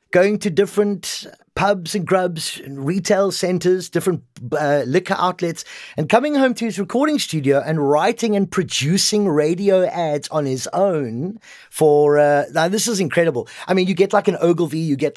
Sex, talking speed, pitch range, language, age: male, 170 wpm, 145-195 Hz, English, 30-49